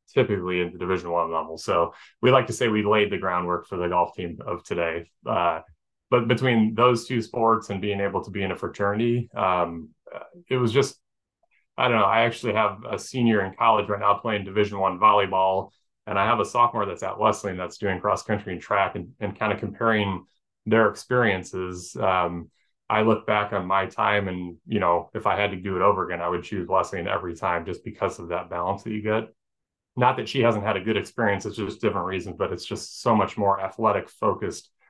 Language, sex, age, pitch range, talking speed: English, male, 20-39, 90-110 Hz, 220 wpm